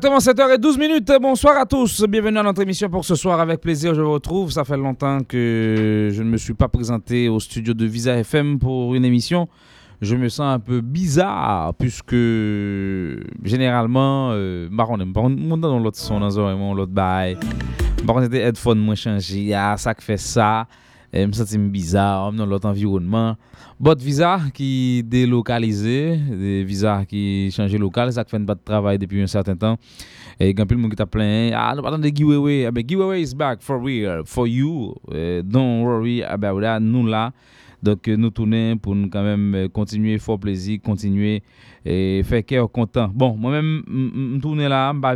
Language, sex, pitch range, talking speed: English, male, 105-135 Hz, 160 wpm